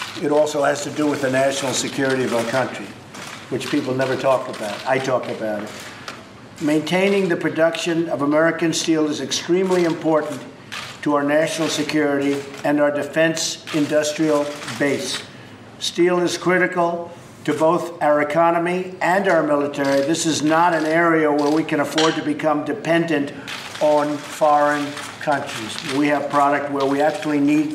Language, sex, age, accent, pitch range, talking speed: English, male, 50-69, American, 135-160 Hz, 155 wpm